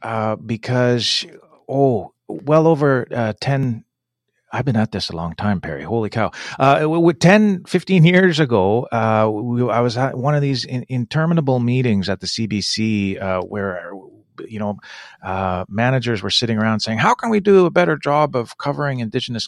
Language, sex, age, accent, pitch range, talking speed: English, male, 40-59, American, 105-140 Hz, 175 wpm